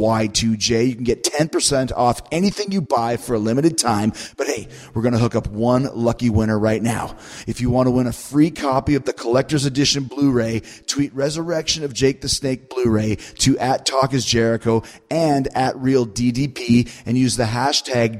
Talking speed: 190 wpm